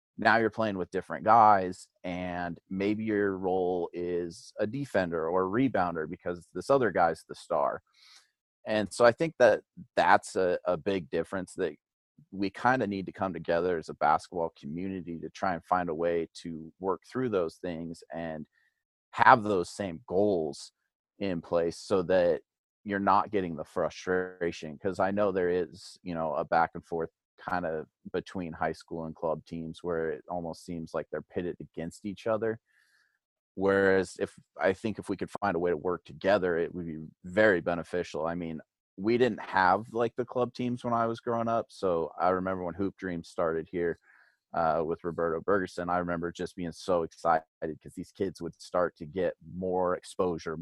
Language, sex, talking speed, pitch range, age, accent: English, male, 185 wpm, 85-100 Hz, 30-49, American